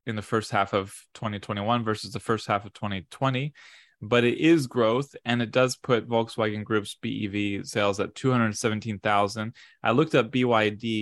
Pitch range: 100-115 Hz